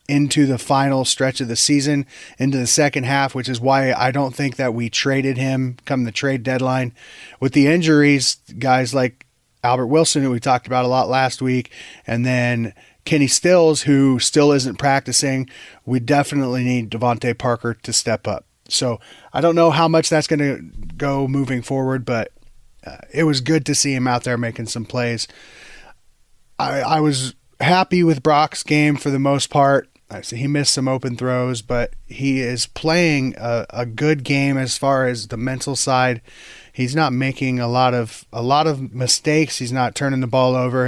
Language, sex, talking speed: English, male, 185 wpm